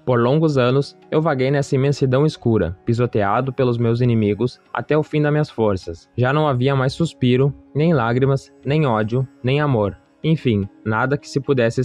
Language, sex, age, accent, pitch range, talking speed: English, male, 20-39, Brazilian, 120-145 Hz, 170 wpm